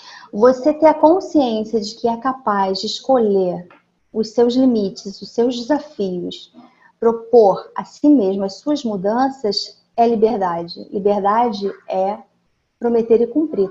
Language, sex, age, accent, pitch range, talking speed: Portuguese, female, 40-59, Brazilian, 215-265 Hz, 130 wpm